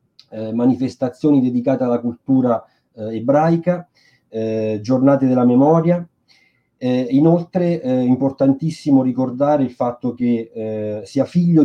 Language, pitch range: Italian, 125-155 Hz